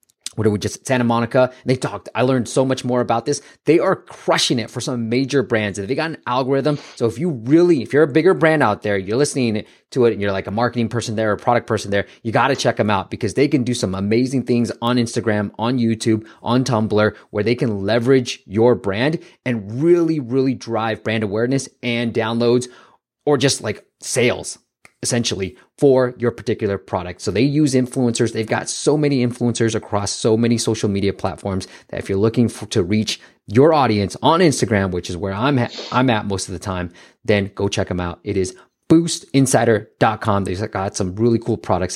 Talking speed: 205 wpm